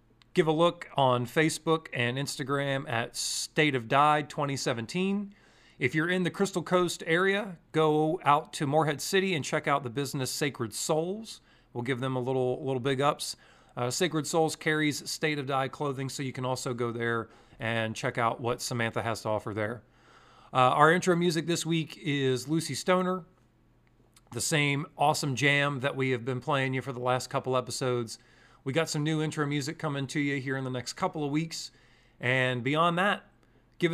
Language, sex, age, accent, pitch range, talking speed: English, male, 40-59, American, 125-155 Hz, 185 wpm